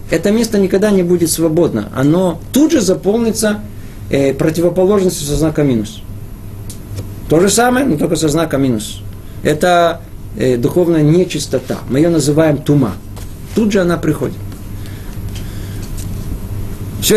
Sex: male